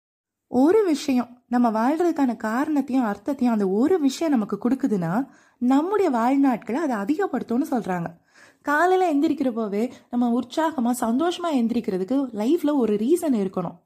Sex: female